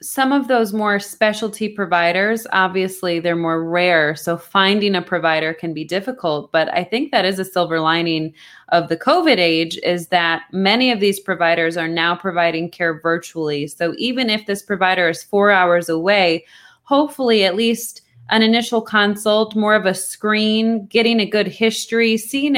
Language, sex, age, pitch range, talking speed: English, female, 20-39, 170-220 Hz, 170 wpm